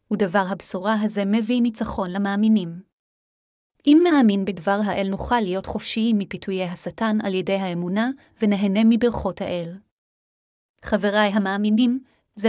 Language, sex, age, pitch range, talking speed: Hebrew, female, 30-49, 195-230 Hz, 115 wpm